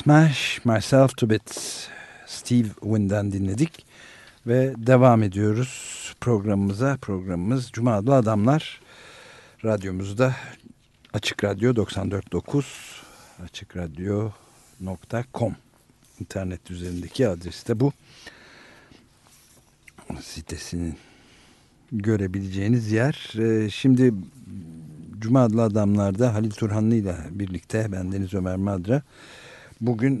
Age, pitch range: 60-79, 95-125 Hz